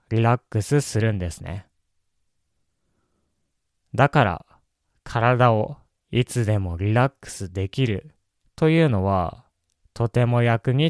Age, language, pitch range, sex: 20-39, Japanese, 90-130 Hz, male